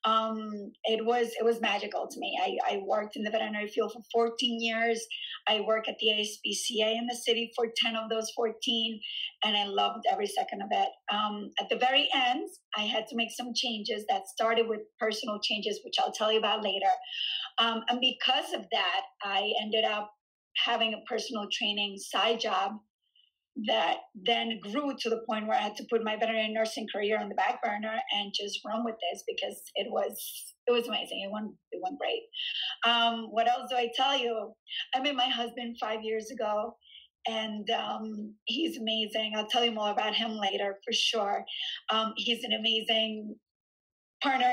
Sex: female